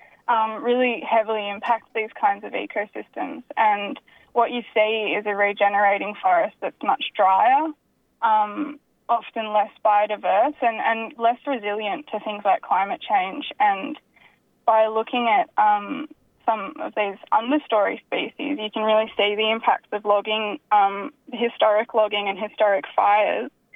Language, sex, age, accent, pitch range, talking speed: English, female, 10-29, Australian, 215-260 Hz, 140 wpm